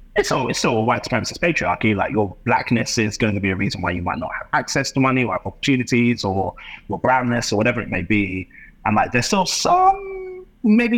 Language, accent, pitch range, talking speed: English, British, 90-120 Hz, 215 wpm